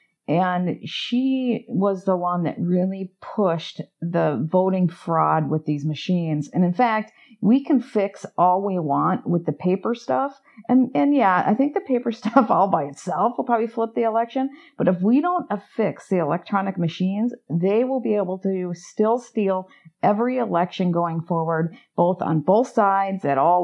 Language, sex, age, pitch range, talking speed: English, female, 50-69, 175-225 Hz, 175 wpm